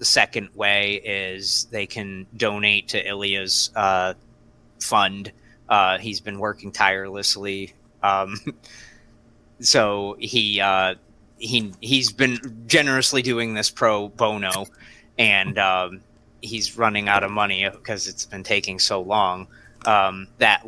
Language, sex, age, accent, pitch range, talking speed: English, male, 30-49, American, 100-115 Hz, 130 wpm